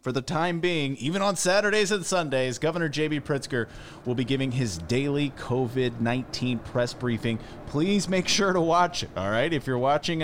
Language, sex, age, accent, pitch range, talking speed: English, male, 30-49, American, 110-170 Hz, 180 wpm